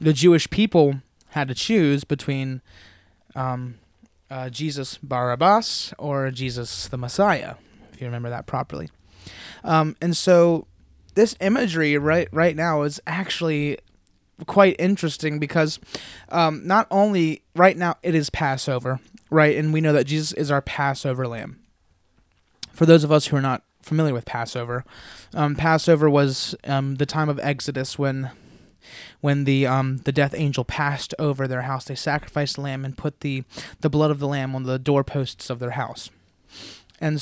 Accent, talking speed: American, 160 wpm